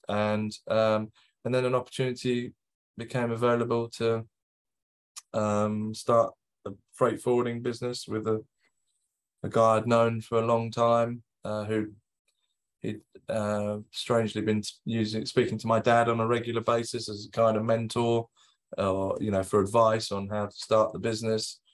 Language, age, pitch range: English, 20-39, 105-120 Hz